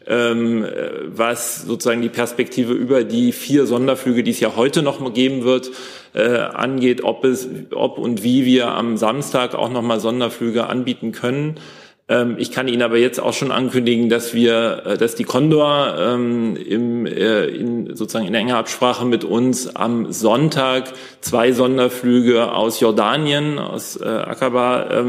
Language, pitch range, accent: German, 115-125 Hz, German